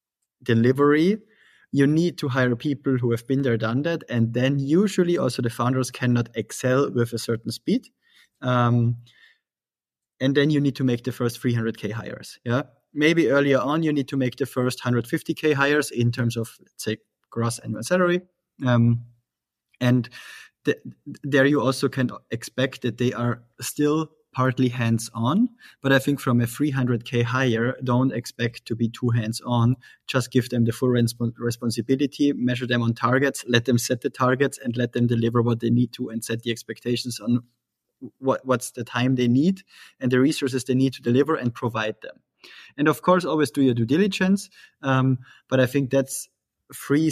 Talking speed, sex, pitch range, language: 175 wpm, male, 120-140 Hz, English